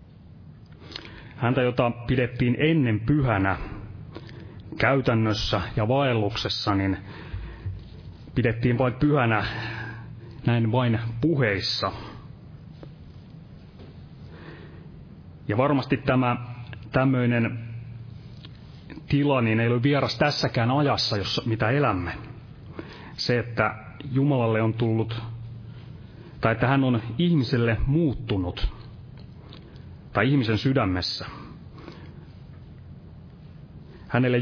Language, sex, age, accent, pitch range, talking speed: Finnish, male, 30-49, native, 110-130 Hz, 75 wpm